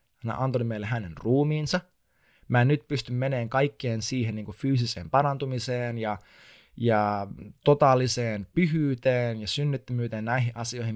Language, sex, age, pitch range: Finnish, male, 20-39, 105-145 Hz